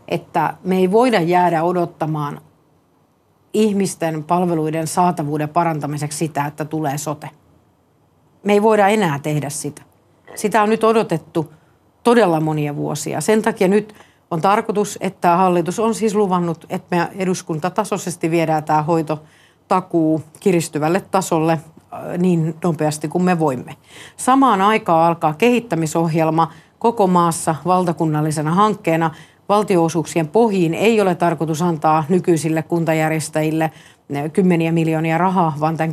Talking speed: 120 wpm